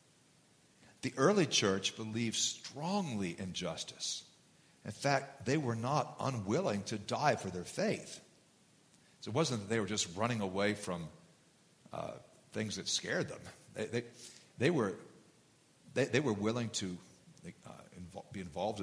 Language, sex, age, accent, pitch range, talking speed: English, male, 50-69, American, 100-130 Hz, 145 wpm